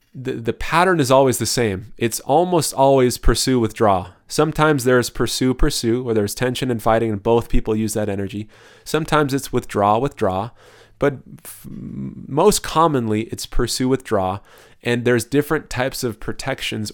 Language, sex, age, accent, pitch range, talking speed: English, male, 30-49, American, 110-145 Hz, 155 wpm